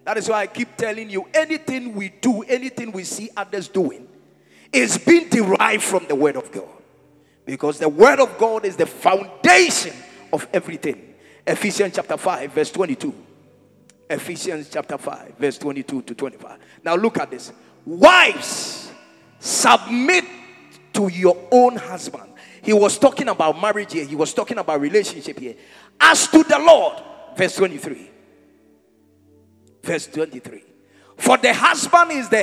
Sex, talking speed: male, 150 wpm